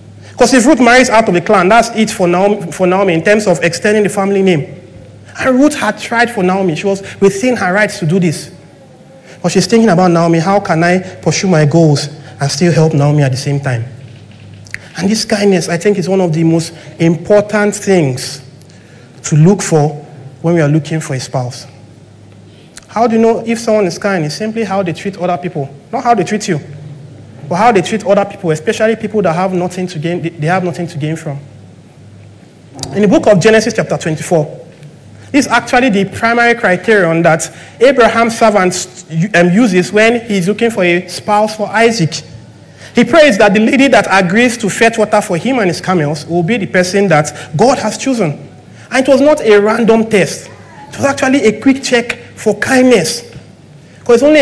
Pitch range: 155-220 Hz